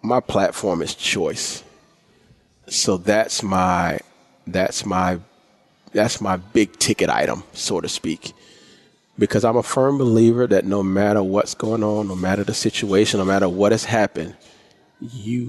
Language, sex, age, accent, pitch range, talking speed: English, male, 40-59, American, 100-120 Hz, 145 wpm